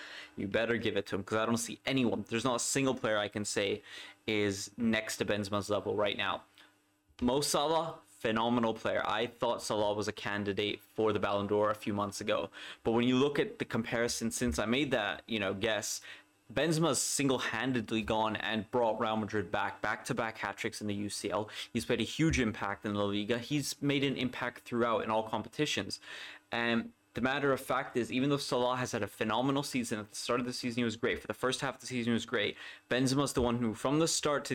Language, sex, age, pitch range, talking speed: English, male, 20-39, 105-125 Hz, 225 wpm